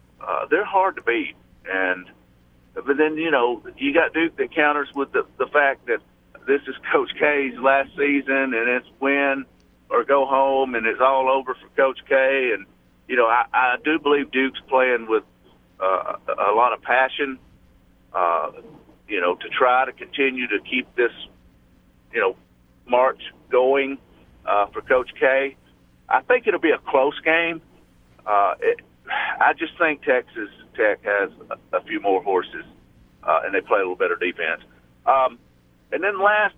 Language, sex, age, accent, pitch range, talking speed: English, male, 50-69, American, 105-160 Hz, 170 wpm